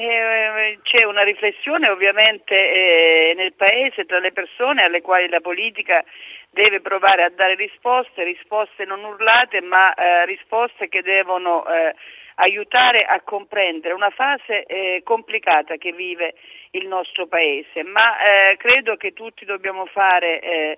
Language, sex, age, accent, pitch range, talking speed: Italian, female, 50-69, native, 185-240 Hz, 120 wpm